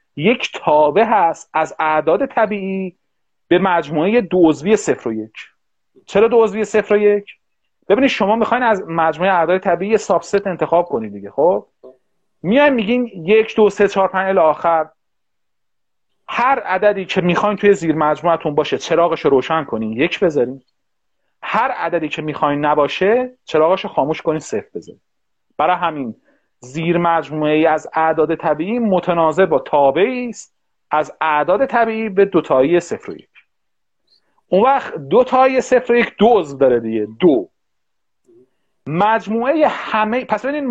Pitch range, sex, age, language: 160-220 Hz, male, 40-59, Persian